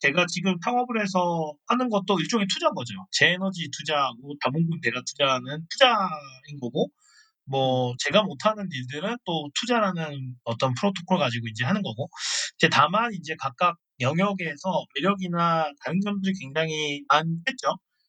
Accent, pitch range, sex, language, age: native, 150-215 Hz, male, Korean, 40-59